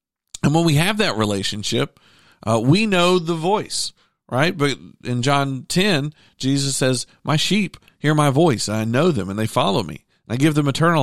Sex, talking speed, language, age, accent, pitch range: male, 185 wpm, English, 50-69, American, 125-165 Hz